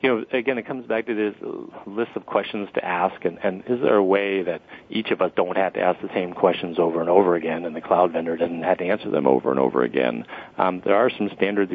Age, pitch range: 40-59, 90-100 Hz